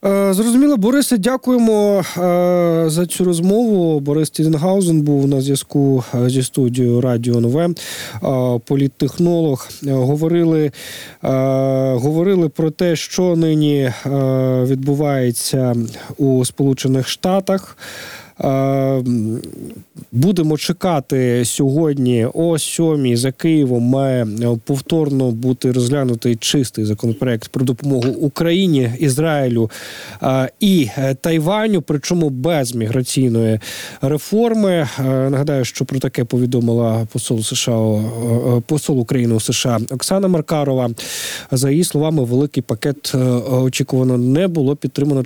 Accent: native